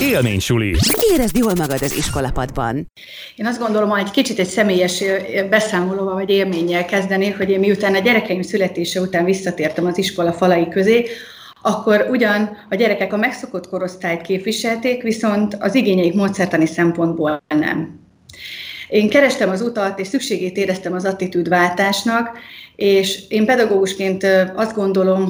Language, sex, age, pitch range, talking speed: Hungarian, female, 30-49, 170-205 Hz, 140 wpm